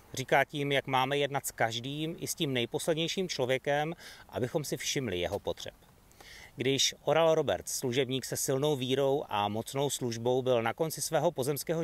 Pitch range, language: 115-150 Hz, Czech